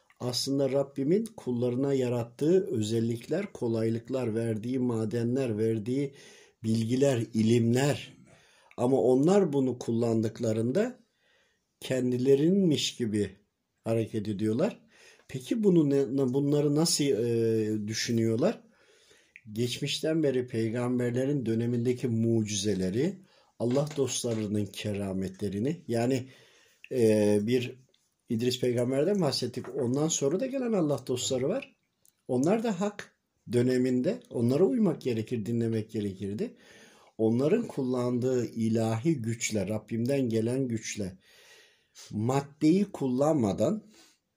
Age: 50-69